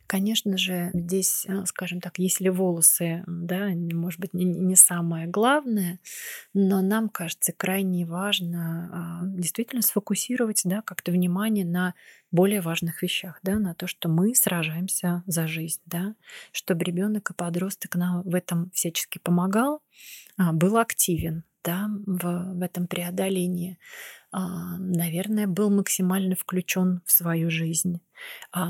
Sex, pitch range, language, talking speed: female, 175-205 Hz, Russian, 115 wpm